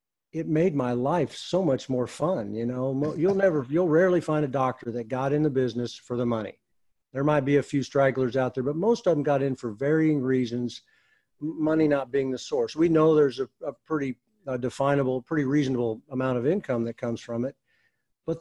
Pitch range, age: 125-150 Hz, 50-69